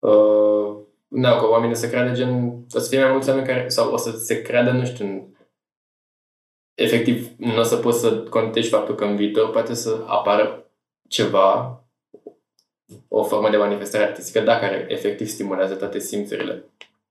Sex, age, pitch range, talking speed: male, 20-39, 105-130 Hz, 165 wpm